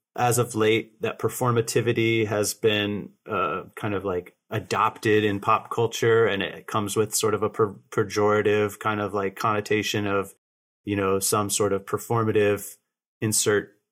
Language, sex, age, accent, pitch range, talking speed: English, male, 30-49, American, 100-110 Hz, 150 wpm